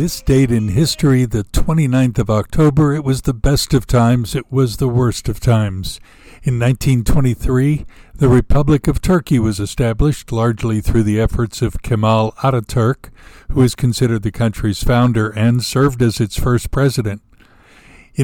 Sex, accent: male, American